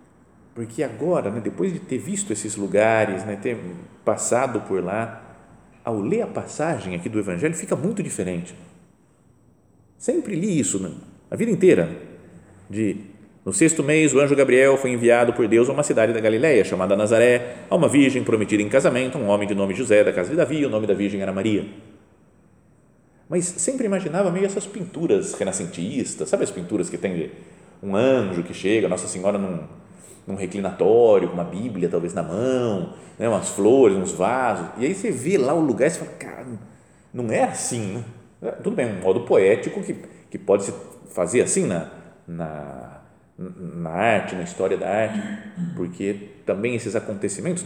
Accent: Brazilian